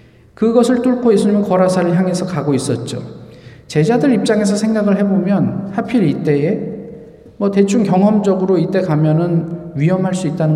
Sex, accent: male, native